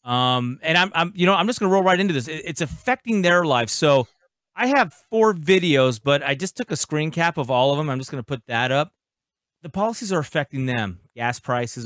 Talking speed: 245 wpm